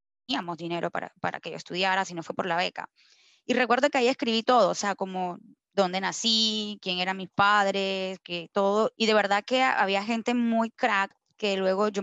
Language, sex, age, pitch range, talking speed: Spanish, female, 10-29, 190-215 Hz, 205 wpm